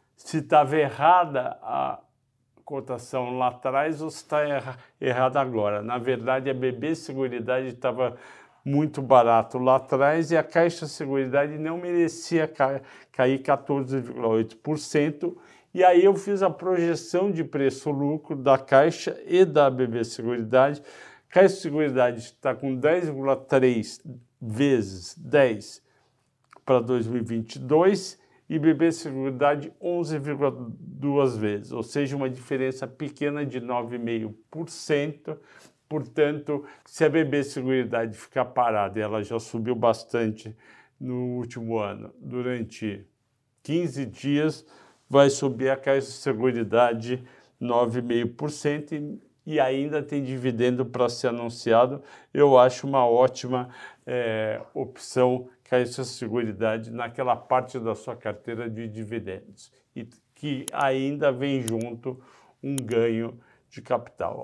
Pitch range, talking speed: 120-145 Hz, 115 wpm